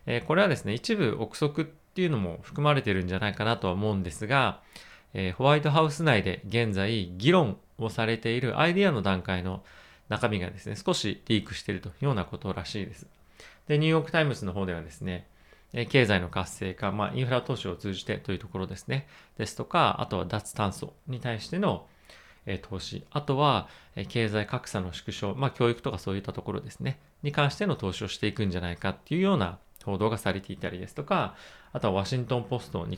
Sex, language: male, Japanese